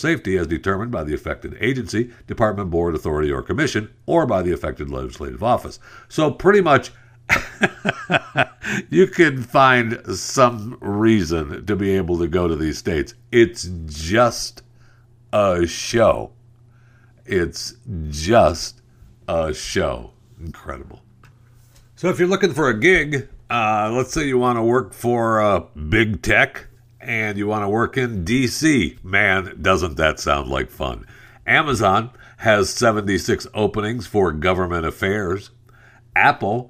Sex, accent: male, American